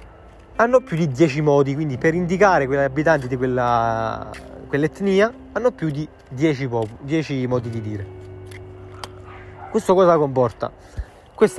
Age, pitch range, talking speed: 20-39, 115-155 Hz, 135 wpm